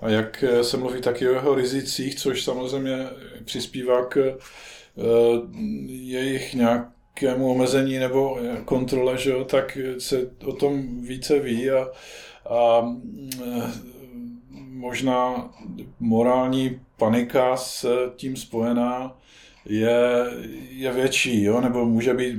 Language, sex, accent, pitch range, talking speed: Czech, male, native, 115-130 Hz, 105 wpm